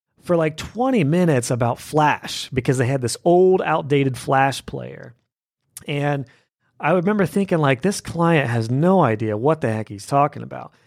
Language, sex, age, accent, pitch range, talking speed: English, male, 40-59, American, 130-165 Hz, 165 wpm